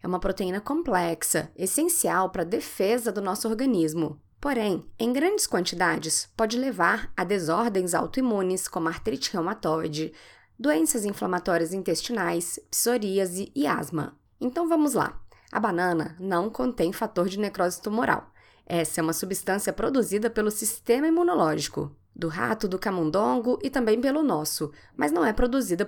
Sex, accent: female, Brazilian